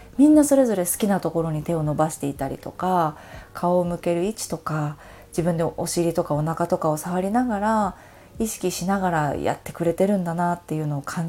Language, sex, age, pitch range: Japanese, female, 20-39, 155-205 Hz